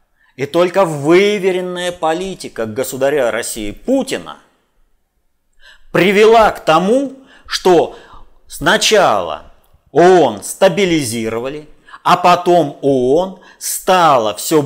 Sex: male